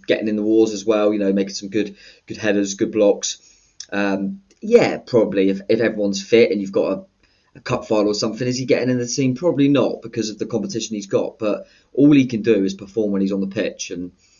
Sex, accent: male, British